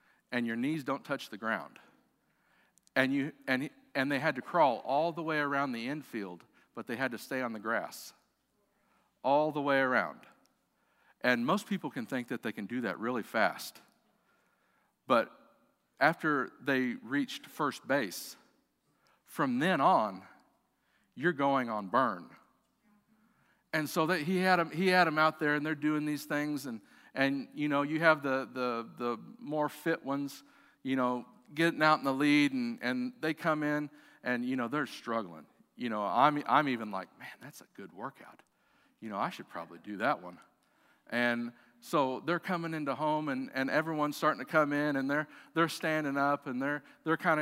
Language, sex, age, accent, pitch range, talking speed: English, male, 50-69, American, 135-165 Hz, 180 wpm